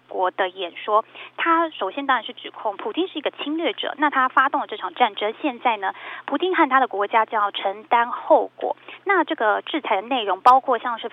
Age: 20-39